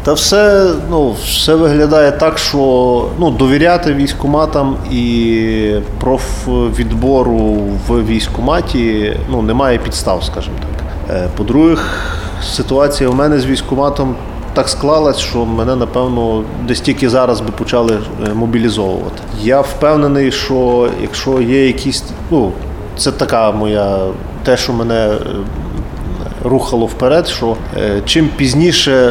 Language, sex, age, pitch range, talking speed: Ukrainian, male, 30-49, 105-140 Hz, 110 wpm